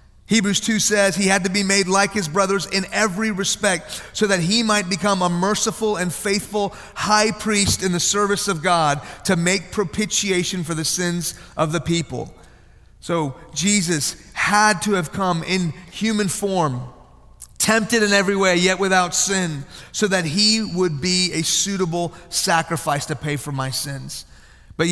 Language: English